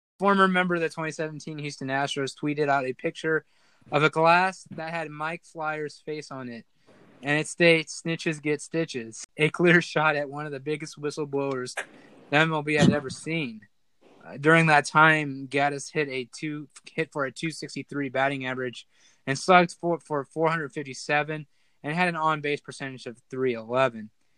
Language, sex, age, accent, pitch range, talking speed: English, male, 20-39, American, 135-160 Hz, 170 wpm